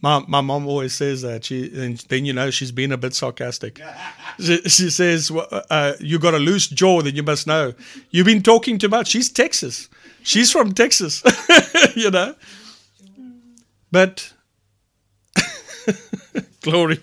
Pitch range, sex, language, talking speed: 140-220 Hz, male, English, 155 wpm